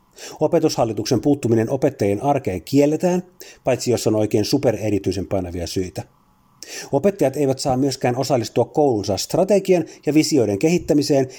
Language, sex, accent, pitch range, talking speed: Finnish, male, native, 105-150 Hz, 115 wpm